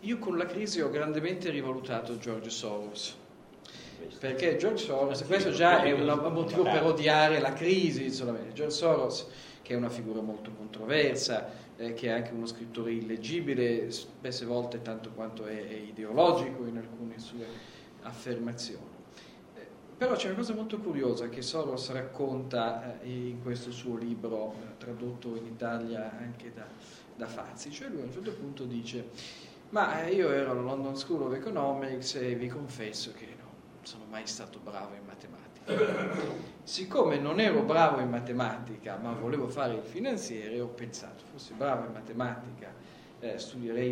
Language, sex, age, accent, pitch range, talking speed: Italian, male, 40-59, native, 115-140 Hz, 155 wpm